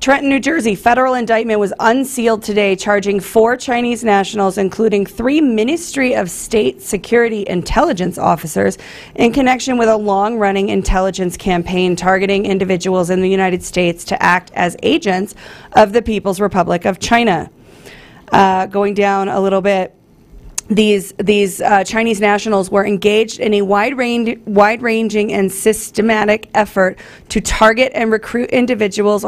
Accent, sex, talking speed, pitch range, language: American, female, 135 wpm, 190-220 Hz, English